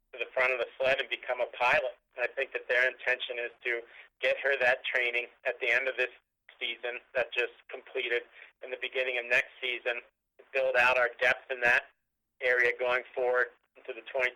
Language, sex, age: English, male, 40-59